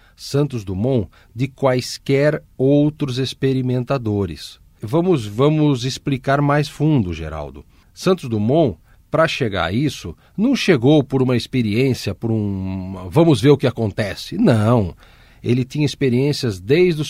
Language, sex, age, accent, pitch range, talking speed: Portuguese, male, 50-69, Brazilian, 115-155 Hz, 125 wpm